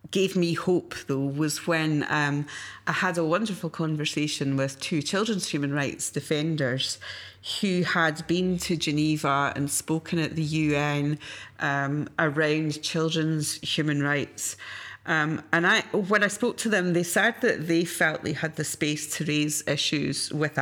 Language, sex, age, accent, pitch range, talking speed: English, female, 40-59, British, 145-170 Hz, 155 wpm